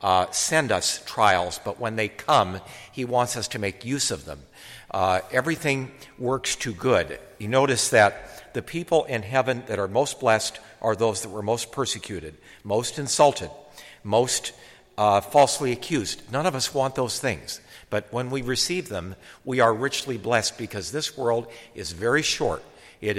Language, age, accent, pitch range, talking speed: English, 50-69, American, 100-130 Hz, 170 wpm